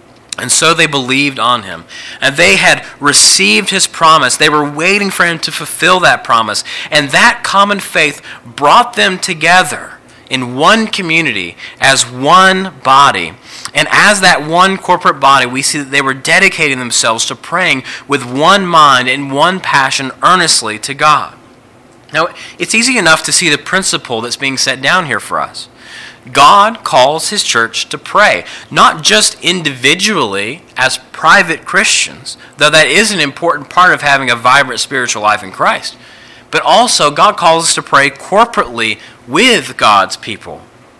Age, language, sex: 30-49, English, male